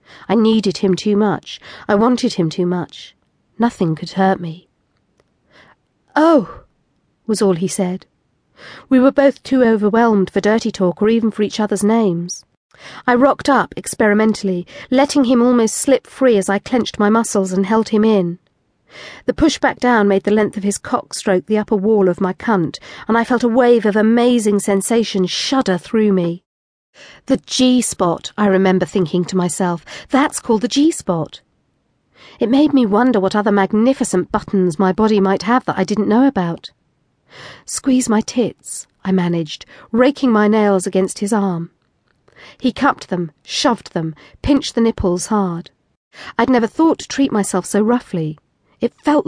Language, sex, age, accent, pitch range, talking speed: English, female, 40-59, British, 190-245 Hz, 165 wpm